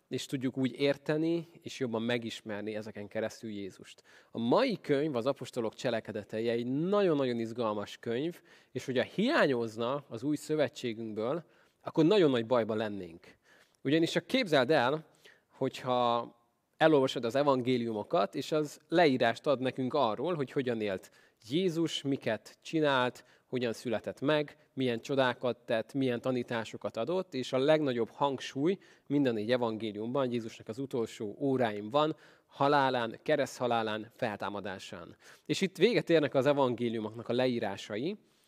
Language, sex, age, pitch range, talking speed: Hungarian, male, 20-39, 115-155 Hz, 130 wpm